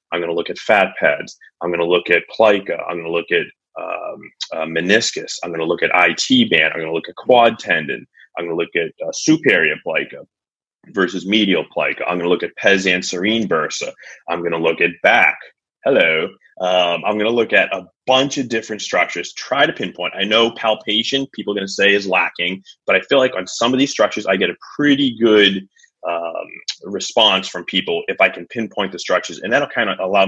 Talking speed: 220 wpm